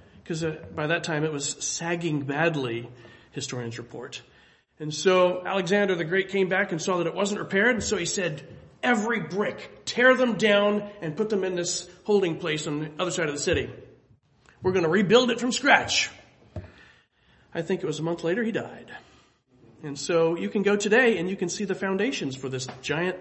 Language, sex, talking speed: English, male, 200 wpm